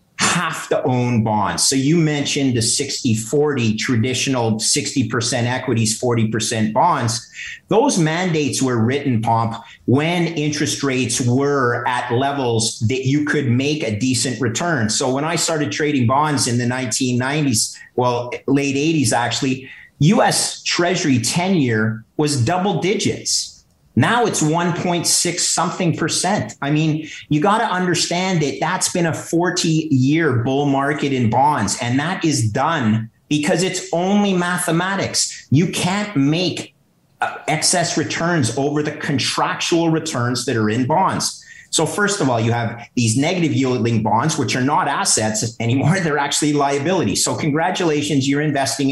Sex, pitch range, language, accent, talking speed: male, 120-160 Hz, English, American, 140 wpm